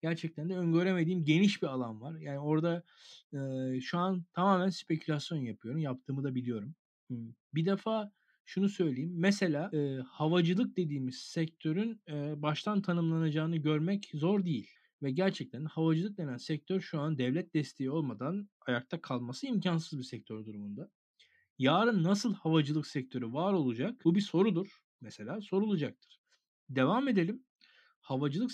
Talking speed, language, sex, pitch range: 130 wpm, Turkish, male, 140-195 Hz